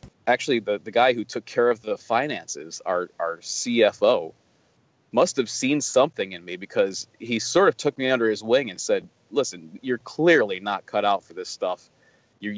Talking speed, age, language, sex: 190 wpm, 30-49, English, male